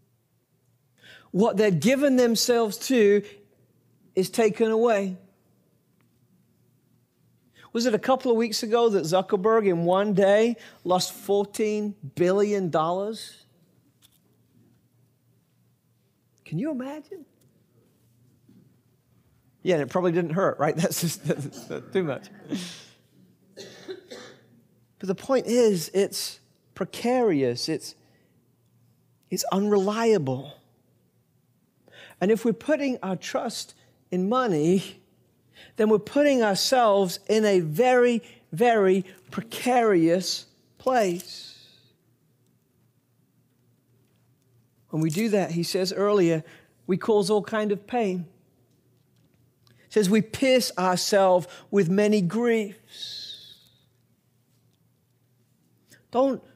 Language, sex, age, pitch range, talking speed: English, male, 40-59, 135-220 Hz, 95 wpm